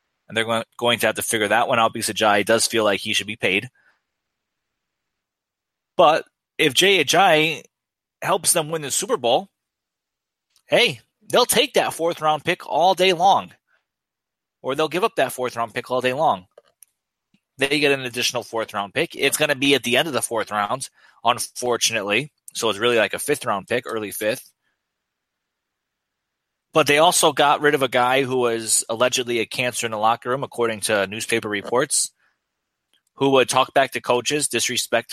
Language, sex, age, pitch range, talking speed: English, male, 20-39, 115-145 Hz, 175 wpm